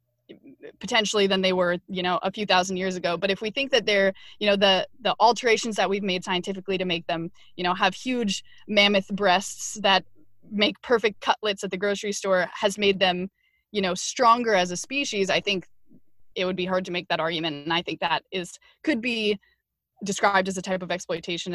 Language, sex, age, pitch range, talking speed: English, female, 20-39, 185-220 Hz, 210 wpm